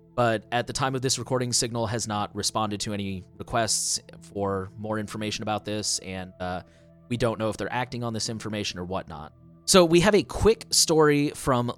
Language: English